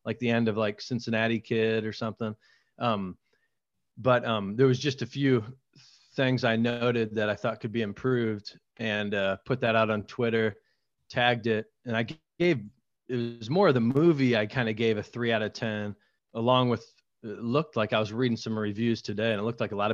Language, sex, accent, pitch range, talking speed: English, male, American, 105-120 Hz, 210 wpm